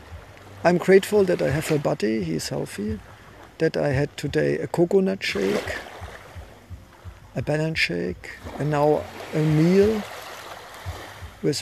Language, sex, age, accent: English, male, 50-69, German